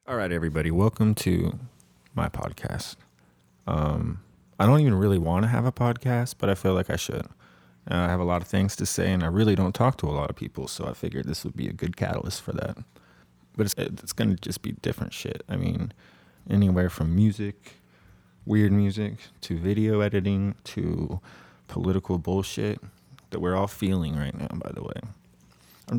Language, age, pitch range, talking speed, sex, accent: English, 20-39, 80-105 Hz, 195 wpm, male, American